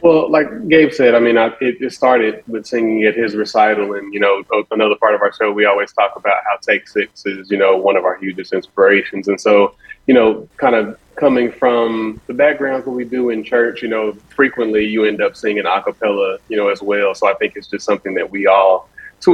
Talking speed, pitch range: 235 wpm, 100-125 Hz